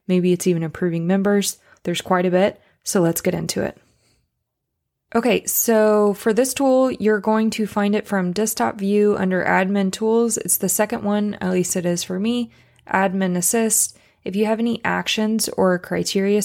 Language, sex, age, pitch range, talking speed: English, female, 20-39, 185-225 Hz, 180 wpm